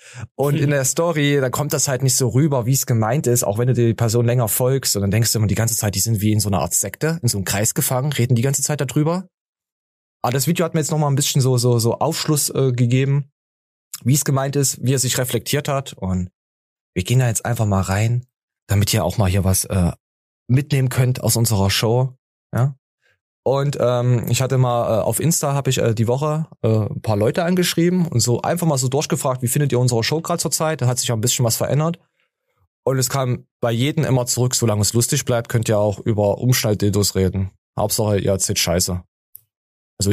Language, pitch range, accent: German, 110-145 Hz, German